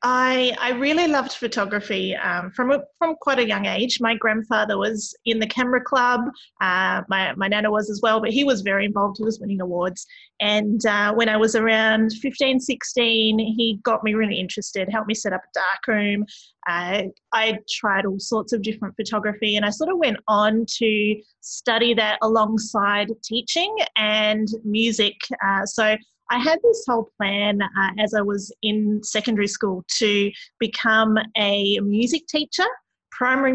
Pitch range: 205-245 Hz